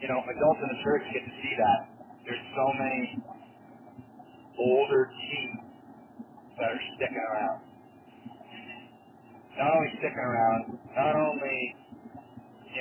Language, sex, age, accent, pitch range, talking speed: English, male, 40-59, American, 120-135 Hz, 120 wpm